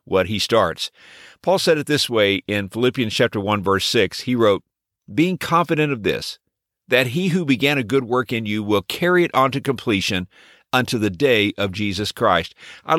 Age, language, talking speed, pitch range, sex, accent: 50-69, English, 195 wpm, 105-140 Hz, male, American